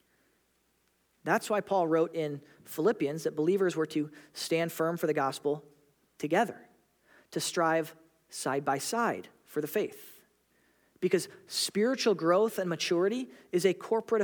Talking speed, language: 135 wpm, English